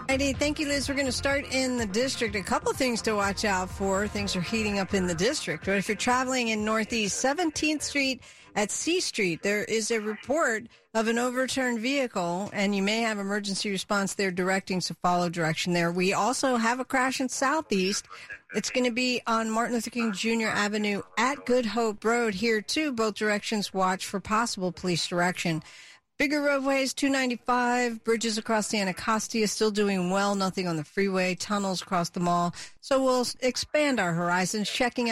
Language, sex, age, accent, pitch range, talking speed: English, female, 50-69, American, 200-245 Hz, 185 wpm